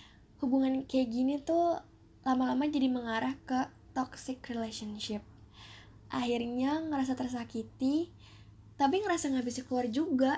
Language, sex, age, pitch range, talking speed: Indonesian, female, 10-29, 225-265 Hz, 110 wpm